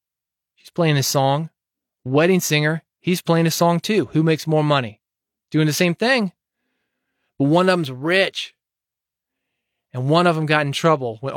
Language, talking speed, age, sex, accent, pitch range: English, 165 wpm, 20-39, male, American, 135-165 Hz